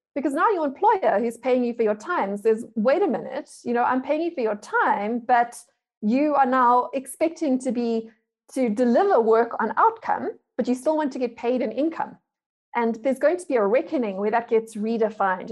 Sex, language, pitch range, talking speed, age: female, English, 215-275 Hz, 210 wpm, 30-49